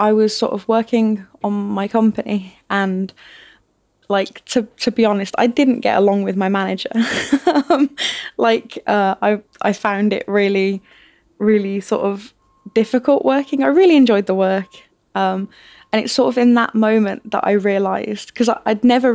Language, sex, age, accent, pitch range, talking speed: English, female, 20-39, British, 200-230 Hz, 165 wpm